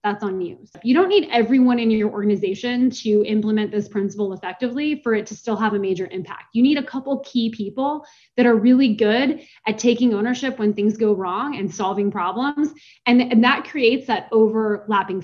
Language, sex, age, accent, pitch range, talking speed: English, female, 20-39, American, 215-260 Hz, 195 wpm